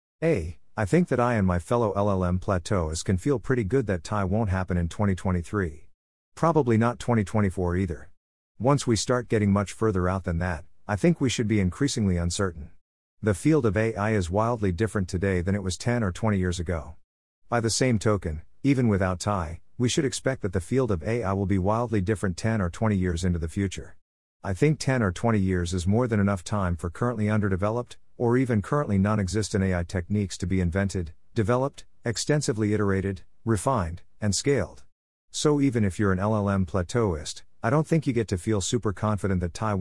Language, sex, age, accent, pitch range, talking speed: English, male, 50-69, American, 90-115 Hz, 195 wpm